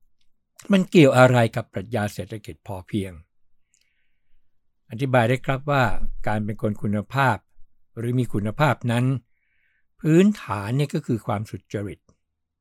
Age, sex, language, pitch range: 60-79, male, Thai, 100-130 Hz